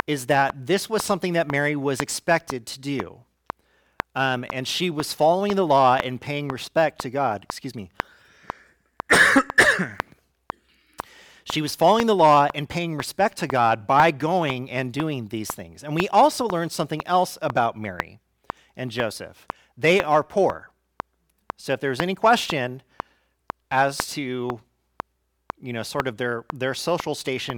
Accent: American